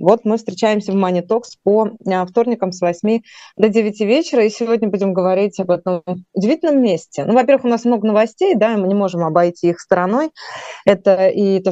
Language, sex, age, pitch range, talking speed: Russian, female, 20-39, 175-220 Hz, 190 wpm